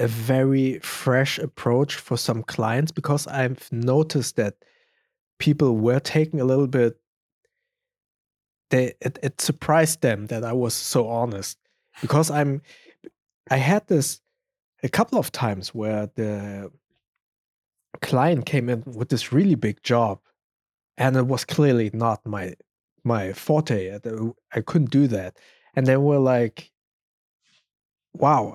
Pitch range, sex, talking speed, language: 115-150 Hz, male, 130 wpm, English